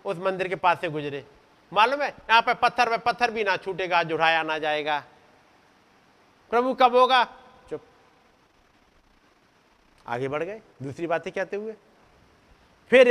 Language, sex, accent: Hindi, male, native